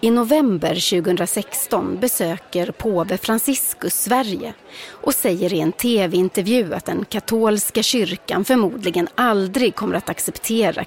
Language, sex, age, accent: English, female, 30-49, Swedish